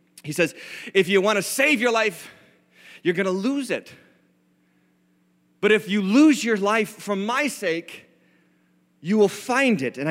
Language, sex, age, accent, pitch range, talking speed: English, male, 30-49, American, 120-180 Hz, 165 wpm